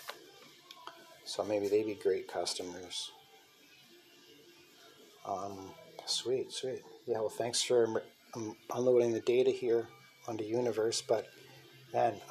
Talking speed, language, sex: 110 wpm, English, male